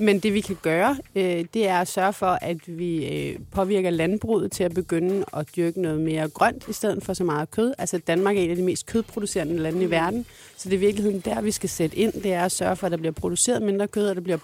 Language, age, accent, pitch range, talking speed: Danish, 30-49, native, 175-210 Hz, 260 wpm